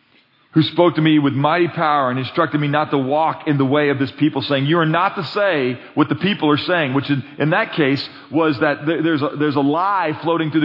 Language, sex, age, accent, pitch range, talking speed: English, male, 40-59, American, 150-185 Hz, 255 wpm